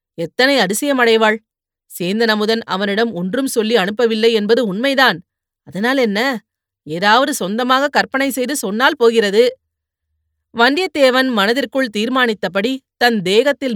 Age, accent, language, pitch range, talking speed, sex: 30-49, native, Tamil, 195-250 Hz, 95 wpm, female